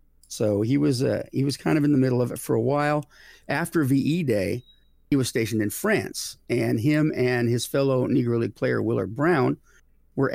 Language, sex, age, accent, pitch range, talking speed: English, male, 50-69, American, 110-140 Hz, 205 wpm